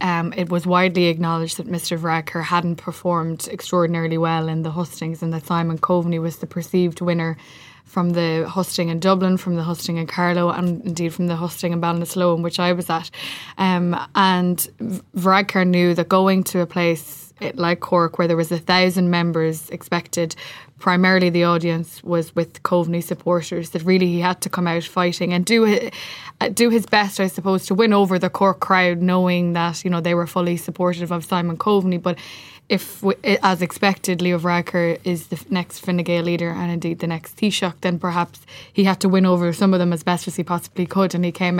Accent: Irish